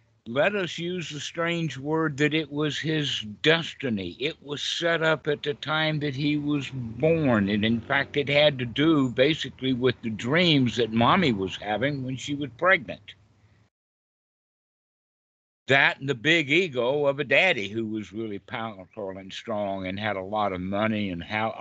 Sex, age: male, 60-79